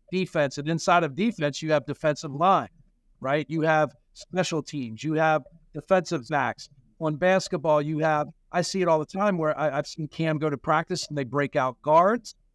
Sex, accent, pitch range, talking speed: male, American, 150-185 Hz, 190 wpm